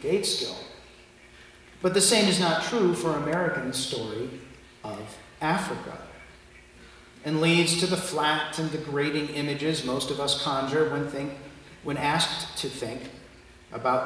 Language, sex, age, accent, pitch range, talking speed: English, male, 40-59, American, 125-155 Hz, 130 wpm